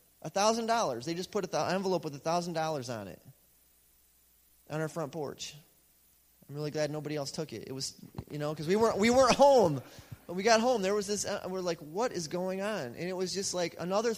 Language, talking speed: English, 215 wpm